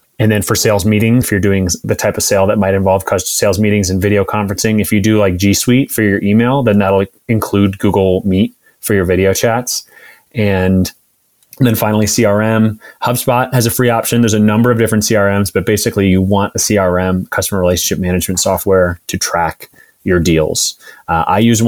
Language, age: English, 20-39